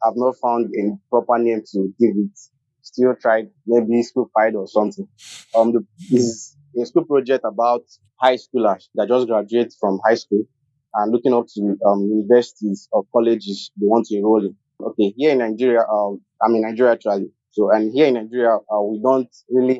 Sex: male